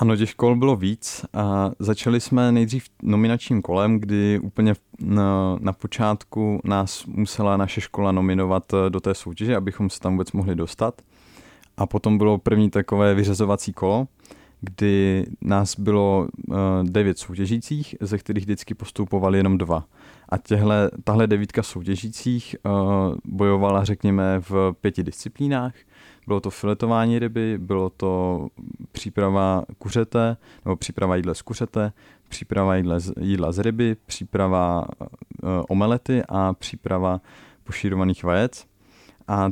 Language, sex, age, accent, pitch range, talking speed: Czech, male, 20-39, native, 95-110 Hz, 125 wpm